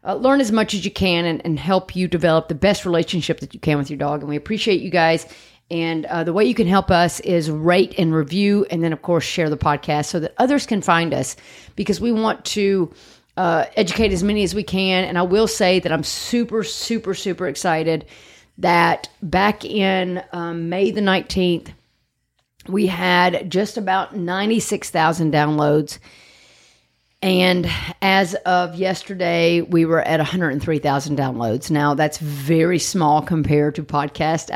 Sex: female